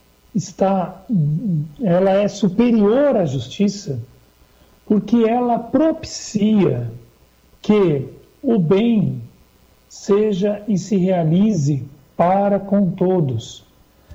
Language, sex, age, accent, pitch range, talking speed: Portuguese, male, 60-79, Brazilian, 155-195 Hz, 75 wpm